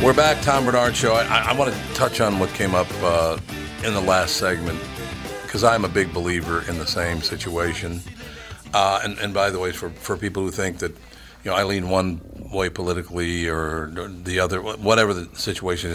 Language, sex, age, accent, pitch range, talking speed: English, male, 50-69, American, 85-100 Hz, 205 wpm